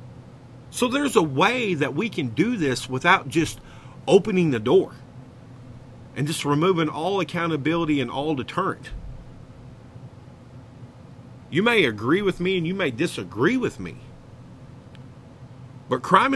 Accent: American